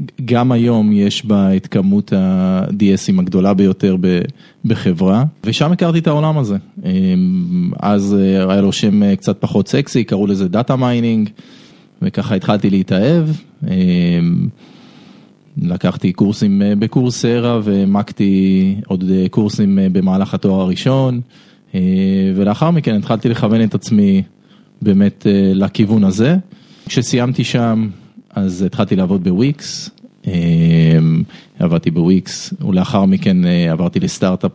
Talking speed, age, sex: 105 wpm, 20-39, male